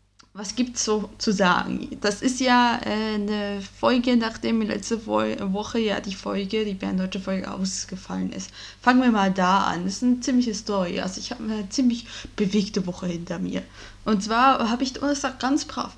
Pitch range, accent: 190-245 Hz, German